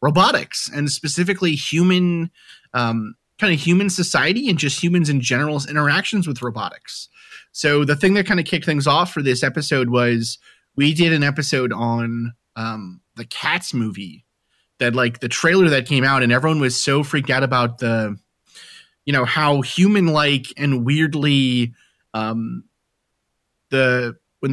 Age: 30-49